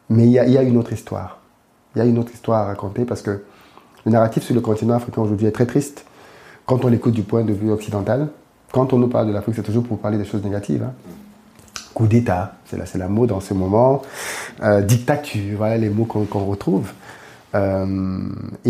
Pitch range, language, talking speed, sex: 100-120 Hz, French, 220 wpm, male